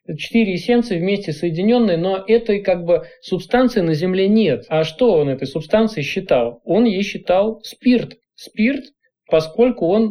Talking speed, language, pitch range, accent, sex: 150 wpm, Russian, 150-205 Hz, native, male